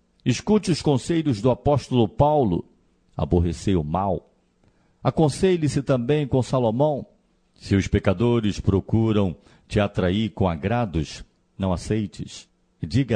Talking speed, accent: 110 wpm, Brazilian